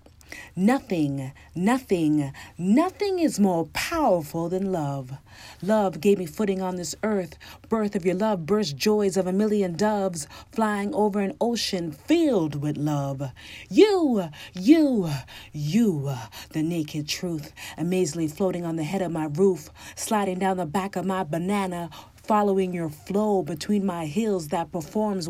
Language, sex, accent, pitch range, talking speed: English, female, American, 170-260 Hz, 145 wpm